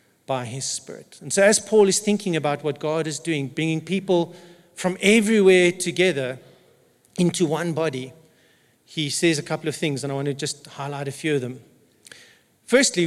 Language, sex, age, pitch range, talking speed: English, male, 50-69, 145-185 Hz, 180 wpm